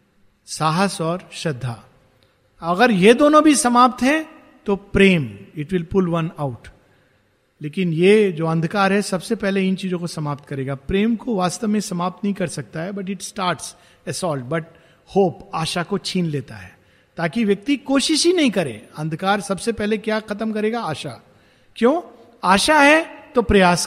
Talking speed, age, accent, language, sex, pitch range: 165 wpm, 50-69, native, Hindi, male, 165-215 Hz